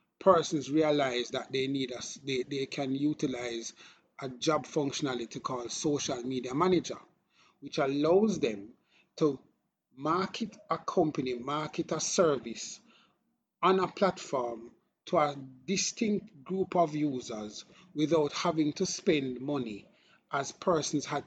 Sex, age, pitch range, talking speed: male, 30-49, 130-175 Hz, 125 wpm